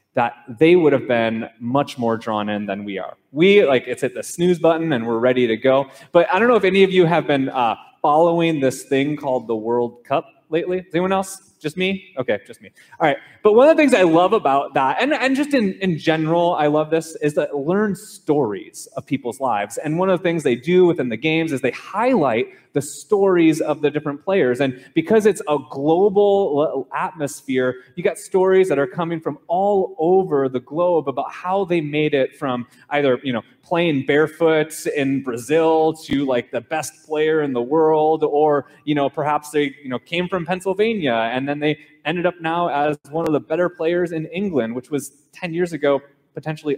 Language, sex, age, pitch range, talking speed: English, male, 20-39, 140-180 Hz, 210 wpm